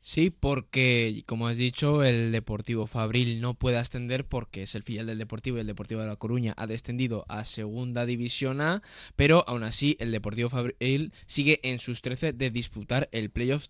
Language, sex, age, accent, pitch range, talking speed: Spanish, male, 20-39, Spanish, 110-130 Hz, 190 wpm